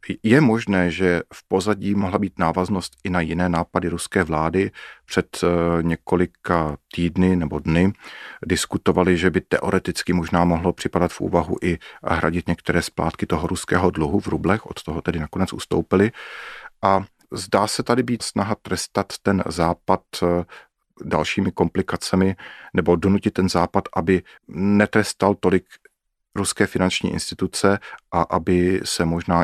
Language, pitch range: Czech, 85-100 Hz